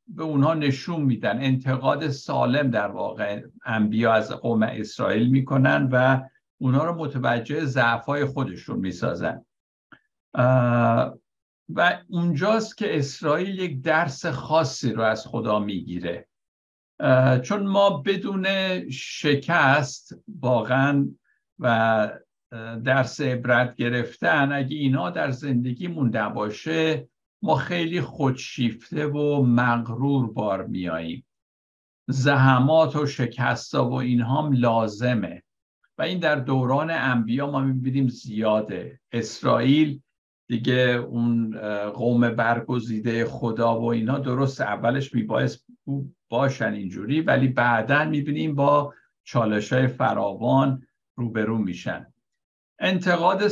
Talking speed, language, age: 100 wpm, Persian, 60-79